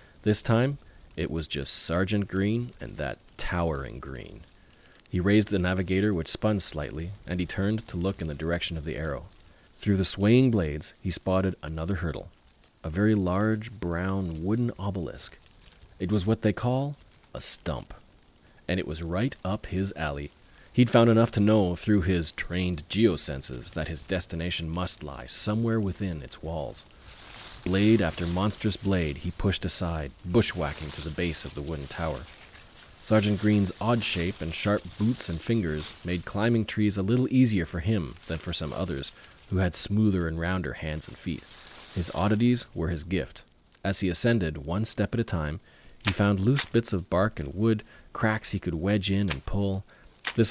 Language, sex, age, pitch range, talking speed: English, male, 40-59, 80-105 Hz, 175 wpm